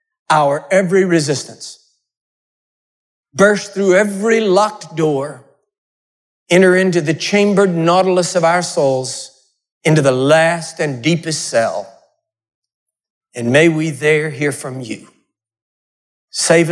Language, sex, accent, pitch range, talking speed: English, male, American, 145-215 Hz, 110 wpm